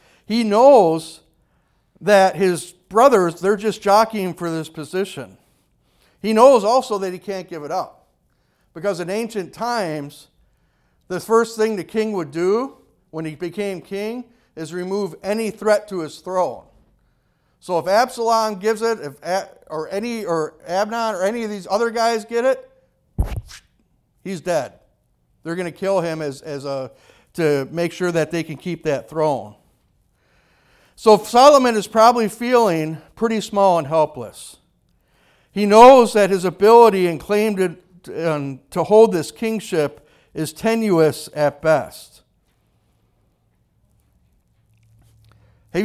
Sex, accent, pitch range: male, American, 155-210 Hz